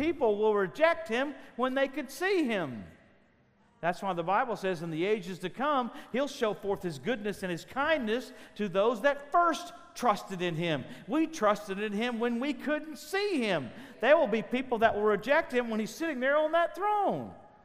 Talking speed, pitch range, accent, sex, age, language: 195 wpm, 155-245 Hz, American, male, 50-69, English